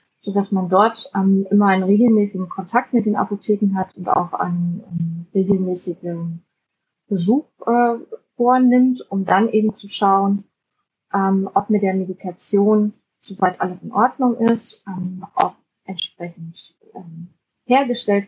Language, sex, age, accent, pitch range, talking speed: English, female, 30-49, German, 185-220 Hz, 130 wpm